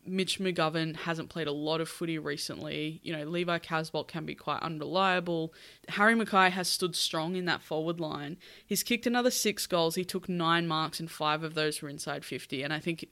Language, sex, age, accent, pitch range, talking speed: English, female, 20-39, Australian, 160-180 Hz, 205 wpm